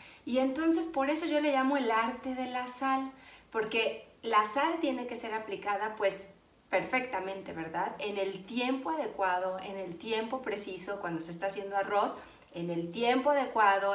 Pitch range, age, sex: 195-265 Hz, 40-59, female